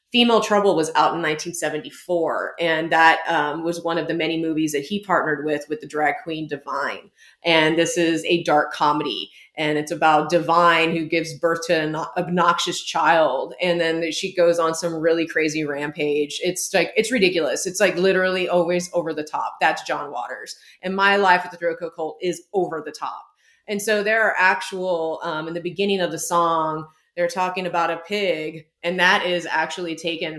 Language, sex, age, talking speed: English, female, 30-49, 190 wpm